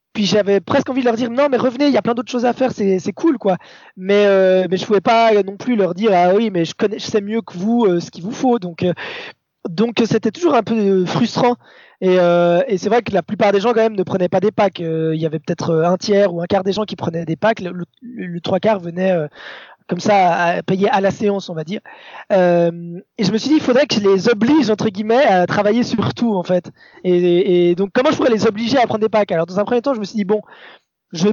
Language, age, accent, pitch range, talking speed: French, 20-39, French, 185-240 Hz, 295 wpm